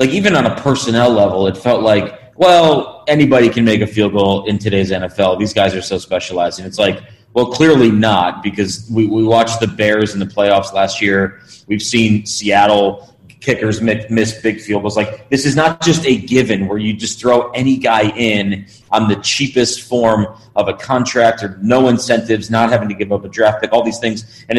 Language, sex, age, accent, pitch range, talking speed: English, male, 30-49, American, 105-120 Hz, 205 wpm